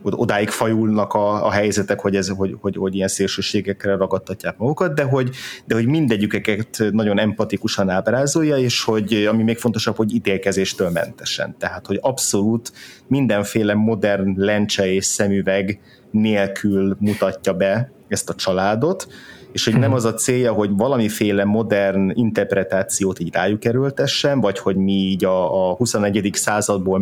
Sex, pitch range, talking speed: male, 95-115 Hz, 145 wpm